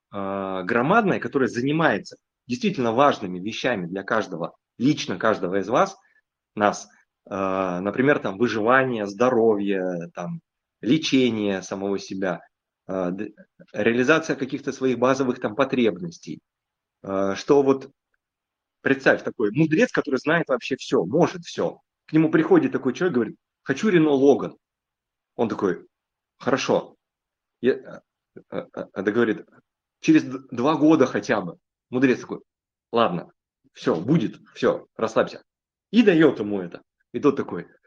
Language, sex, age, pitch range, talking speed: Russian, male, 30-49, 100-145 Hz, 115 wpm